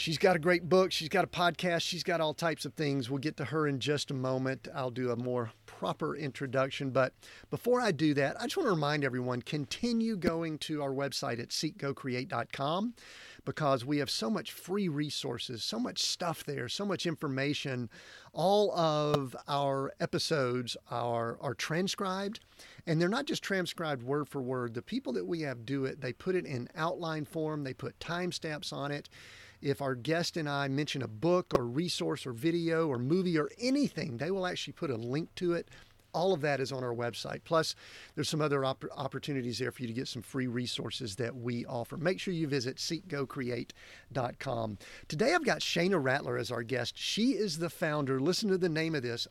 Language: English